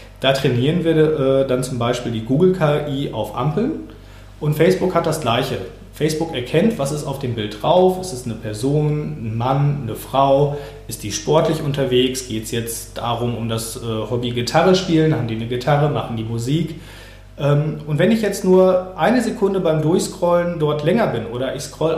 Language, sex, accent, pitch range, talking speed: German, male, German, 120-160 Hz, 190 wpm